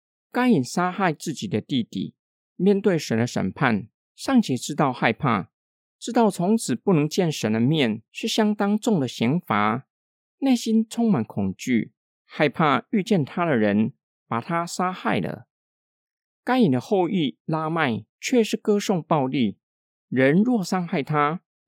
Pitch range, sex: 125-205 Hz, male